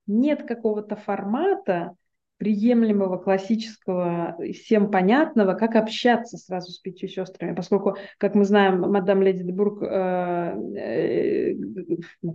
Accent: native